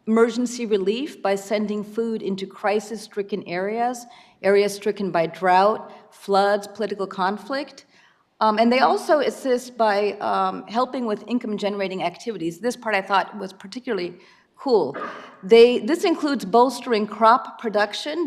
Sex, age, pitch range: female, 50-69, 195-240 Hz